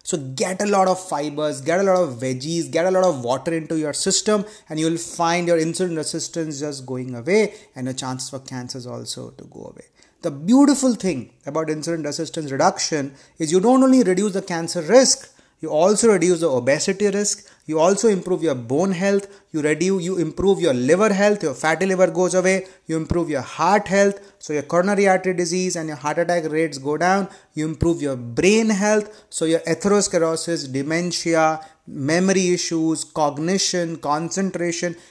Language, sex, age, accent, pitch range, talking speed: Hindi, male, 30-49, native, 150-190 Hz, 185 wpm